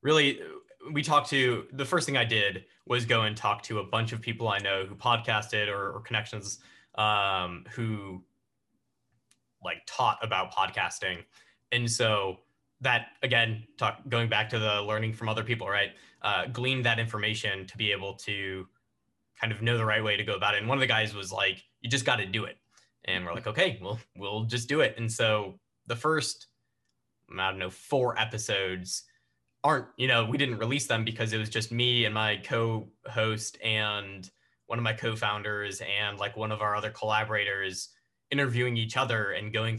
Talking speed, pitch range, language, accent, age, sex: 190 wpm, 105-120 Hz, English, American, 10-29, male